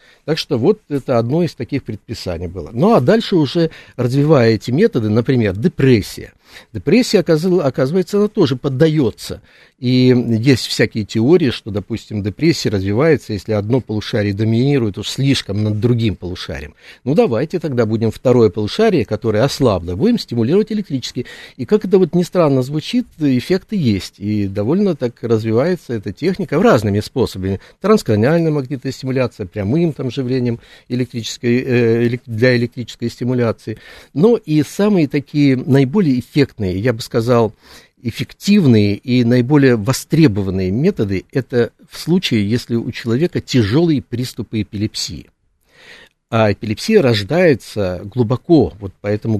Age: 60-79